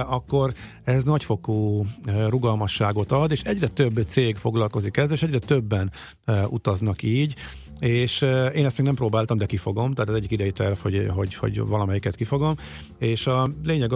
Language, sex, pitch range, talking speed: Hungarian, male, 105-130 Hz, 160 wpm